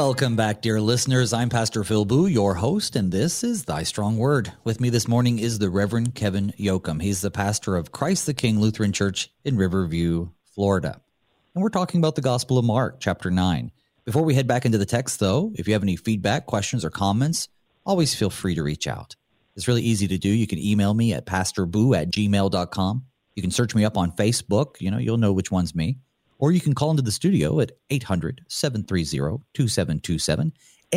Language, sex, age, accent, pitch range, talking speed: English, male, 30-49, American, 100-135 Hz, 205 wpm